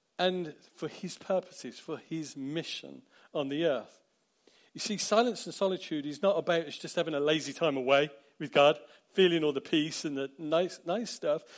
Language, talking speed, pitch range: English, 180 wpm, 150-185 Hz